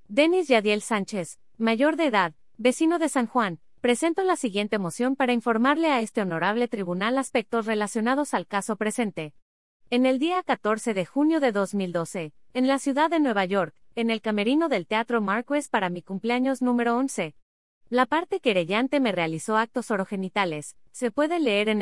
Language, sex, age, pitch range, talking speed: Spanish, female, 30-49, 195-270 Hz, 170 wpm